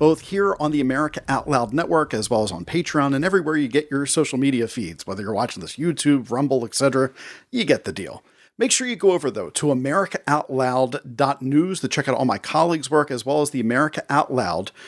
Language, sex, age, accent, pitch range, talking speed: English, male, 40-59, American, 135-170 Hz, 220 wpm